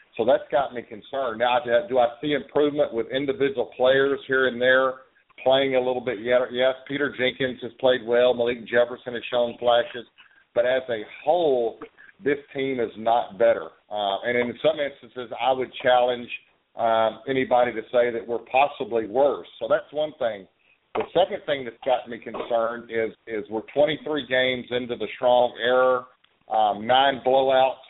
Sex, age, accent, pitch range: male, 50-69, American, 115-135 Hz